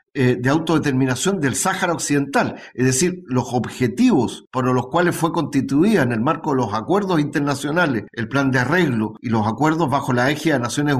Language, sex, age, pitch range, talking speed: Spanish, male, 50-69, 125-160 Hz, 180 wpm